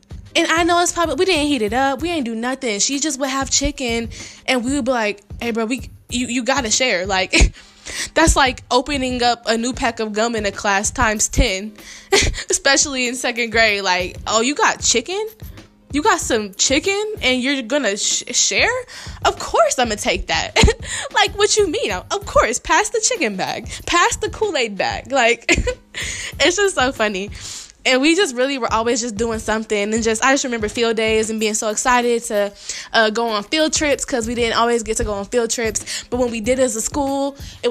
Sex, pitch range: female, 220-280 Hz